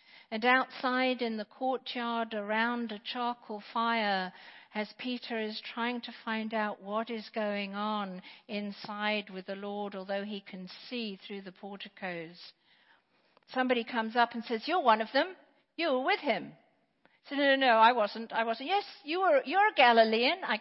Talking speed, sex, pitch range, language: 170 wpm, female, 200-250 Hz, English